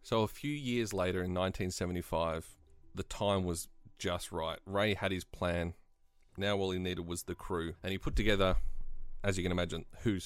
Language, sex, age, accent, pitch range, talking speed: English, male, 30-49, Australian, 85-105 Hz, 185 wpm